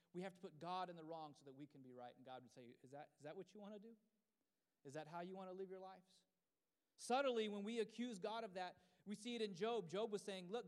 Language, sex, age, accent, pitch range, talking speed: English, male, 30-49, American, 160-210 Hz, 290 wpm